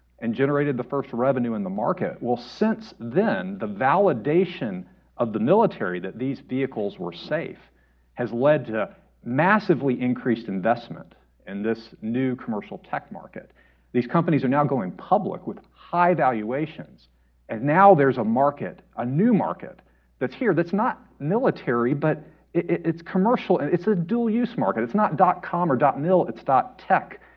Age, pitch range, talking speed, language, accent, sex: 50-69, 115-185 Hz, 155 wpm, English, American, male